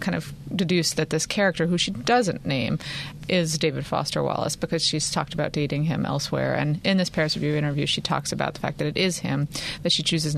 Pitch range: 150-180 Hz